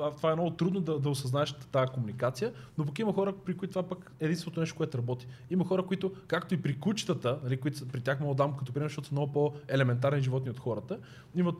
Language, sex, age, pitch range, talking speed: Bulgarian, male, 20-39, 135-180 Hz, 240 wpm